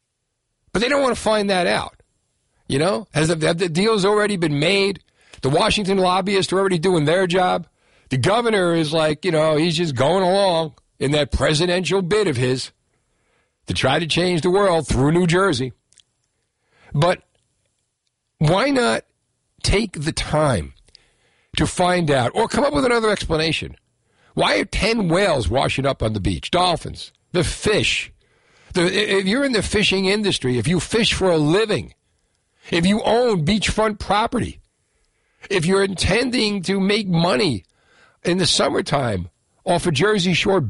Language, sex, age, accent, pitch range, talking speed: English, male, 60-79, American, 125-195 Hz, 160 wpm